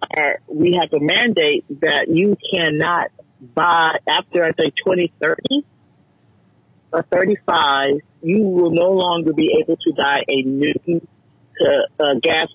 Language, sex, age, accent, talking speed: English, male, 50-69, American, 140 wpm